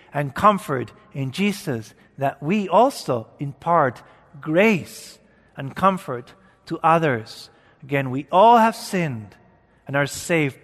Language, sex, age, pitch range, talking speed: English, male, 40-59, 125-200 Hz, 120 wpm